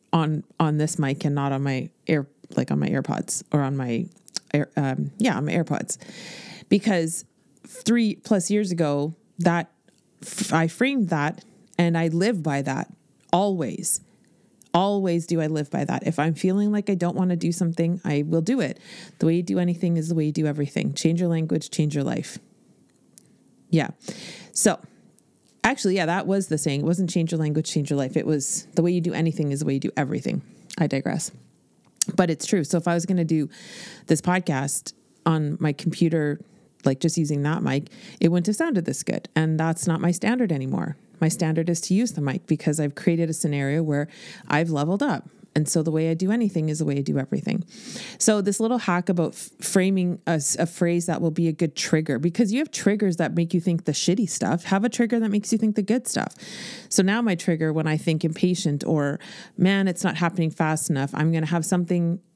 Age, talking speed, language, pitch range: 30-49, 215 wpm, English, 155-195 Hz